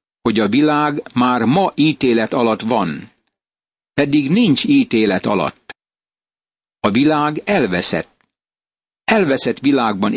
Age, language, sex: 60-79, Hungarian, male